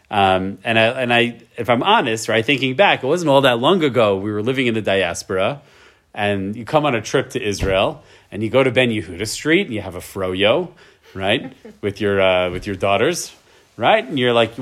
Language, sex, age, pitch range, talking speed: English, male, 30-49, 110-145 Hz, 220 wpm